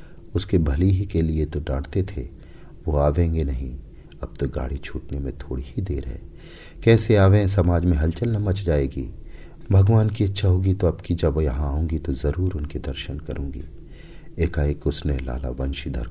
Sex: male